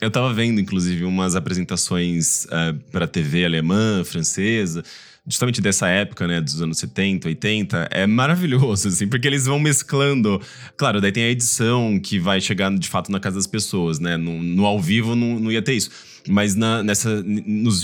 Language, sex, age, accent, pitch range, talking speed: Portuguese, male, 20-39, Brazilian, 100-130 Hz, 180 wpm